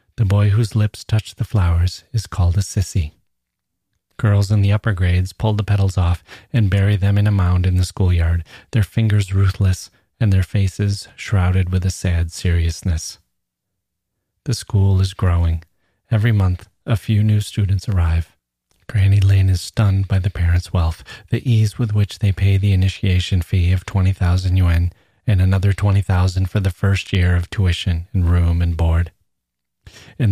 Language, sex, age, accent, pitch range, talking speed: English, male, 30-49, American, 90-105 Hz, 170 wpm